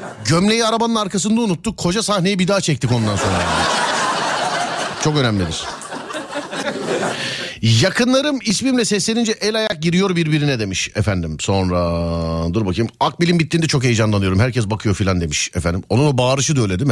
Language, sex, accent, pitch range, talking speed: Turkish, male, native, 110-175 Hz, 140 wpm